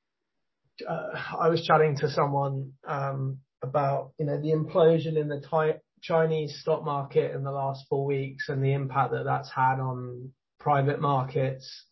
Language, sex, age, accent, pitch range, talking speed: English, male, 20-39, British, 130-155 Hz, 155 wpm